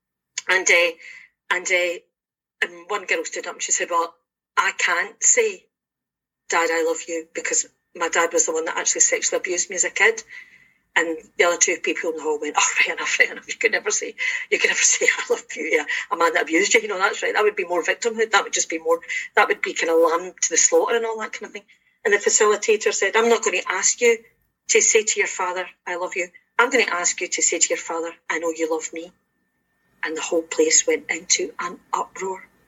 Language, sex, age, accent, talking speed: English, female, 40-59, British, 250 wpm